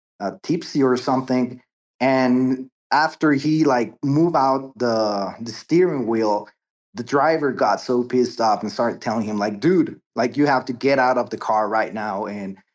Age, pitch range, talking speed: 20-39, 115-140 Hz, 180 wpm